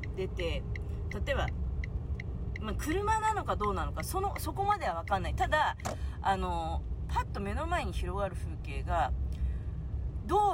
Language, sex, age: Japanese, female, 30-49